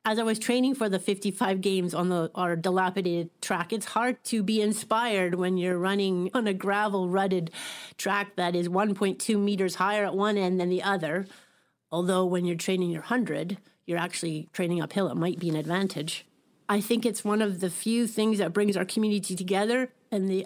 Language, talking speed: English, 195 wpm